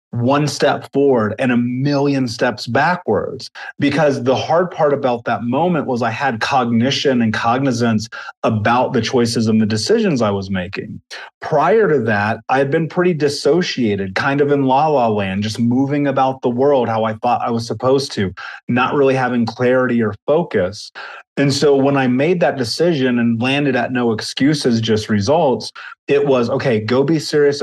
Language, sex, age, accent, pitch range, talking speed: English, male, 30-49, American, 115-140 Hz, 175 wpm